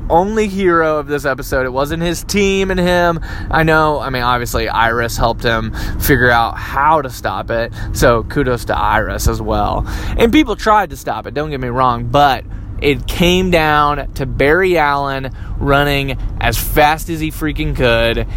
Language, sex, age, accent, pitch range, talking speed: English, male, 20-39, American, 125-170 Hz, 180 wpm